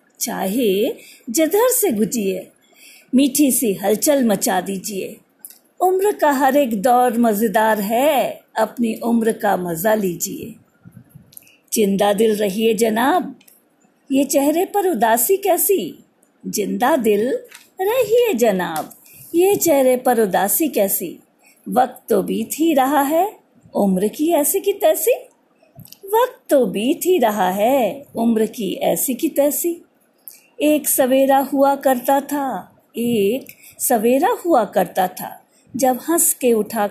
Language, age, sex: Hindi, 50-69, female